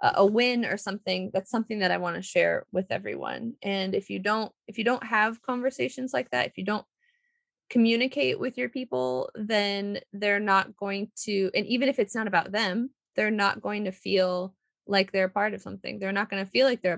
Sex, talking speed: female, 215 wpm